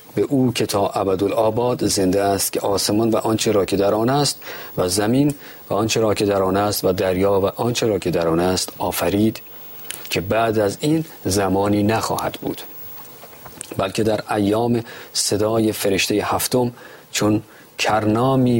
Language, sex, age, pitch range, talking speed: Persian, male, 40-59, 95-115 Hz, 165 wpm